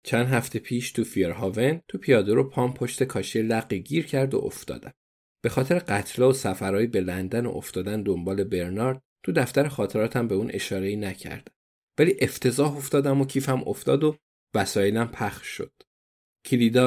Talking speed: 160 wpm